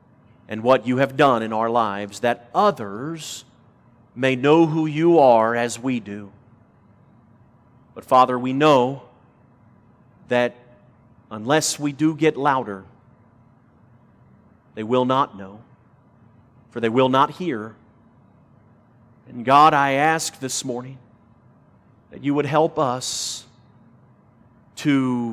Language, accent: English, American